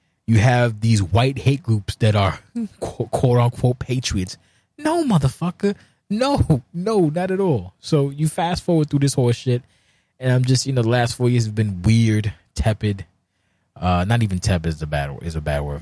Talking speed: 185 wpm